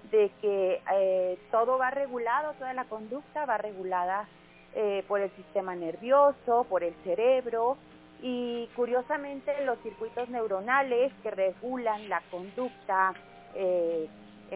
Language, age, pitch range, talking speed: Spanish, 30-49, 200-250 Hz, 120 wpm